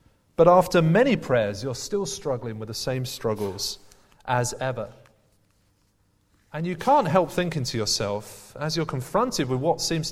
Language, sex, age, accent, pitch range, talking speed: English, male, 30-49, British, 105-165 Hz, 155 wpm